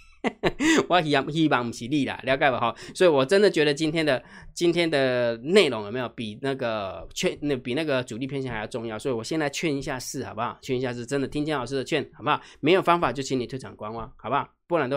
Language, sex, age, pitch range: Chinese, male, 20-39, 135-190 Hz